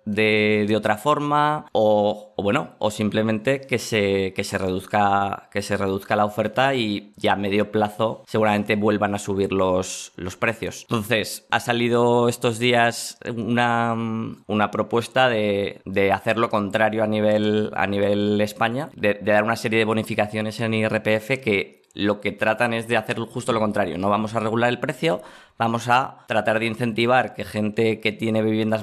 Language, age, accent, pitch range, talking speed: Spanish, 20-39, Spanish, 105-115 Hz, 175 wpm